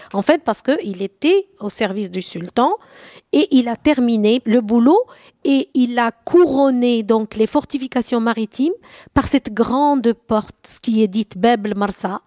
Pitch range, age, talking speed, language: 205-270 Hz, 50-69, 155 wpm, French